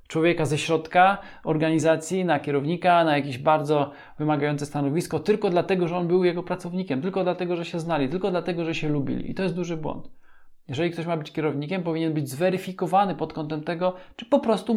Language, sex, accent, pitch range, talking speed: Polish, male, native, 145-185 Hz, 190 wpm